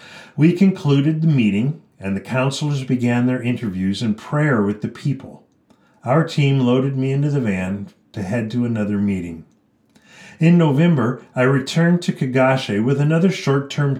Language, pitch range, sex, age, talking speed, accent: English, 120-165 Hz, male, 40-59, 155 wpm, American